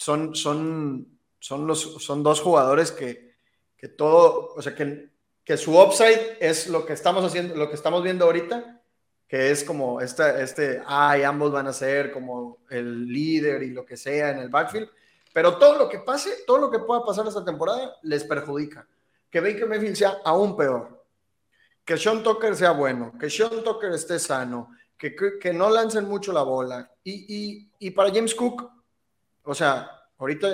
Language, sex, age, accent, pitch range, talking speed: Spanish, male, 30-49, Mexican, 145-205 Hz, 185 wpm